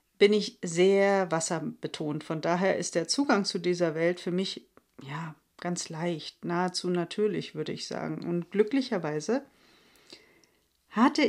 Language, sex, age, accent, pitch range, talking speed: German, female, 40-59, German, 170-215 Hz, 135 wpm